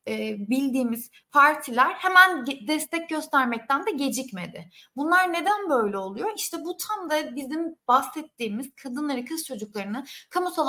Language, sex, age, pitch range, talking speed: Turkish, female, 30-49, 235-325 Hz, 120 wpm